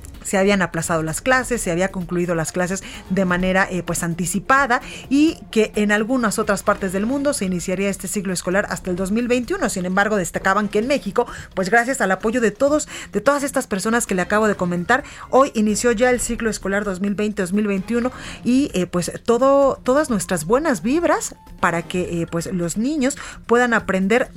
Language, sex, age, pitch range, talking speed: Spanish, female, 30-49, 185-250 Hz, 185 wpm